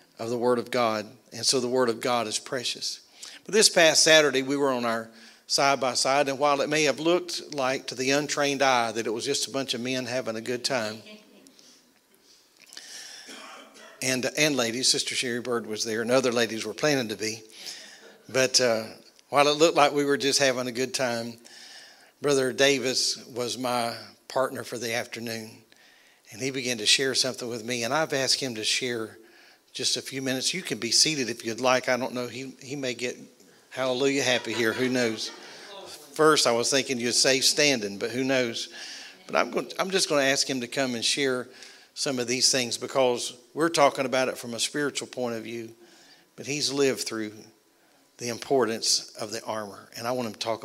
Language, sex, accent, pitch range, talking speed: English, male, American, 115-140 Hz, 205 wpm